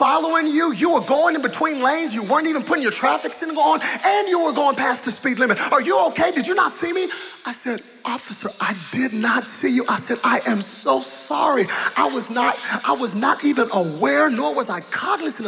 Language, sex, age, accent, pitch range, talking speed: English, male, 30-49, American, 220-315 Hz, 225 wpm